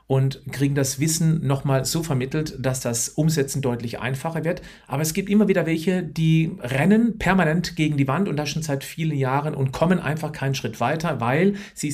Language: German